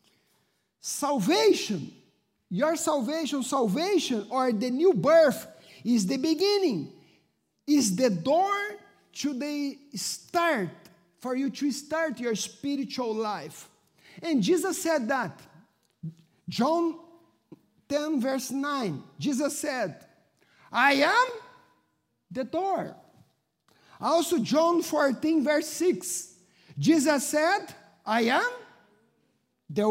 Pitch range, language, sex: 245-345 Hz, English, male